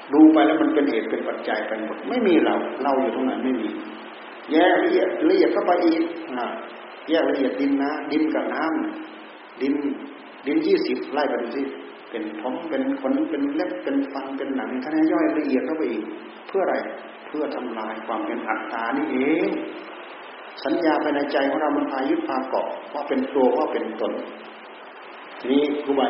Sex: male